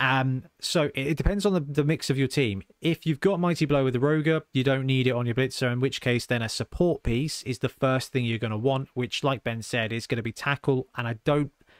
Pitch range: 120-145 Hz